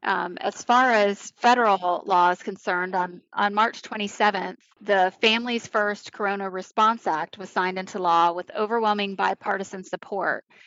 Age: 20-39